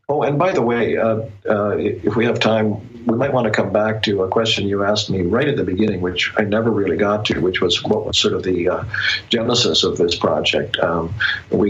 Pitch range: 105-115 Hz